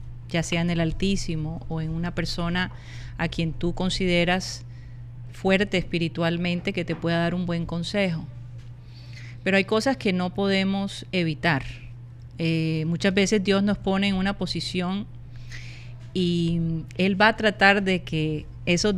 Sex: female